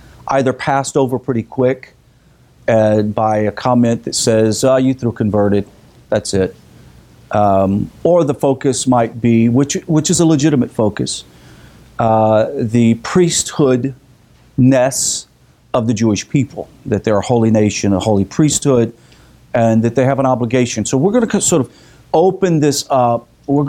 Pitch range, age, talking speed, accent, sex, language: 110-140 Hz, 40-59, 155 wpm, American, male, English